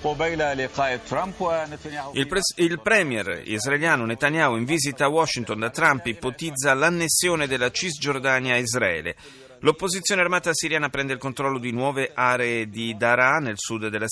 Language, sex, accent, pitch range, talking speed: Italian, male, native, 115-165 Hz, 135 wpm